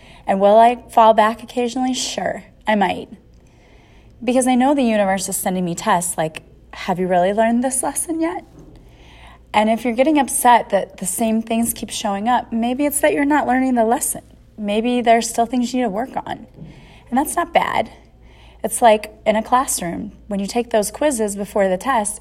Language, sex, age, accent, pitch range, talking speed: English, female, 30-49, American, 195-235 Hz, 195 wpm